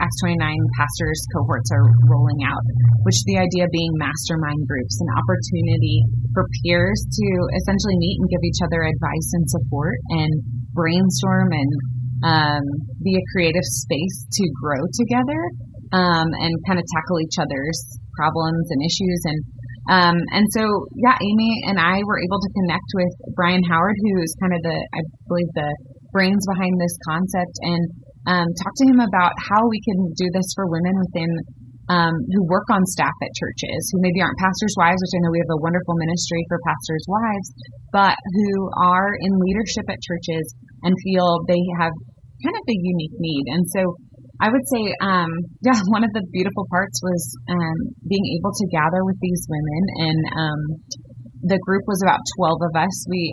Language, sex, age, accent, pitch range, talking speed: English, female, 20-39, American, 145-185 Hz, 180 wpm